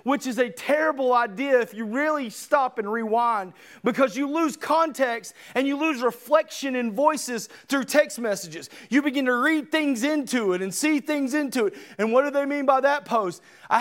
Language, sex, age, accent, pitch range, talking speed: English, male, 30-49, American, 235-310 Hz, 195 wpm